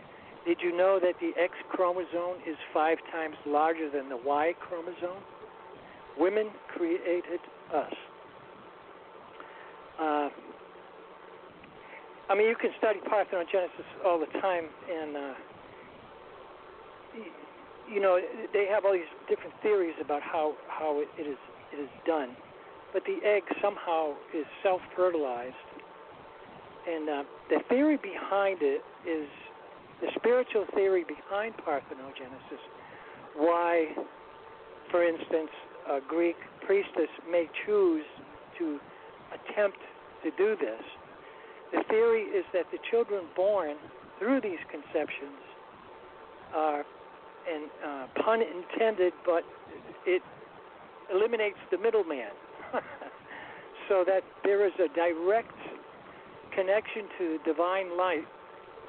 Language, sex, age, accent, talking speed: English, male, 60-79, American, 105 wpm